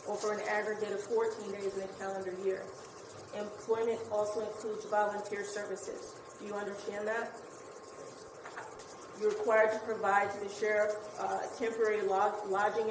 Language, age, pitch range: English, 30-49, 210-235 Hz